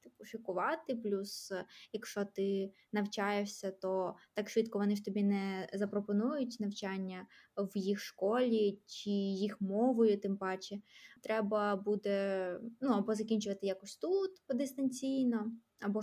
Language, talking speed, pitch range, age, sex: Ukrainian, 115 wpm, 200-230 Hz, 20-39, female